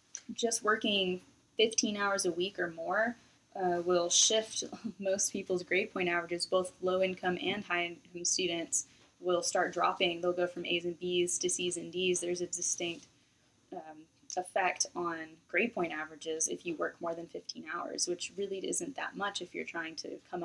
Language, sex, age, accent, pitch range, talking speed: English, female, 10-29, American, 175-205 Hz, 180 wpm